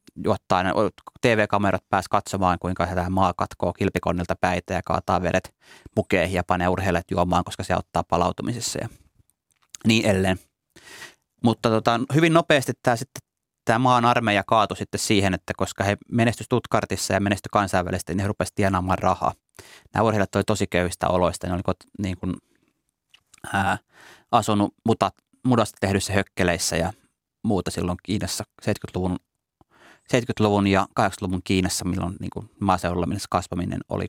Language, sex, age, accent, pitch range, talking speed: Finnish, male, 30-49, native, 90-105 Hz, 140 wpm